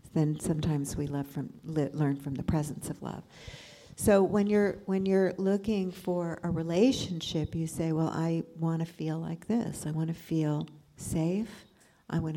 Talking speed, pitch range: 180 wpm, 160-190 Hz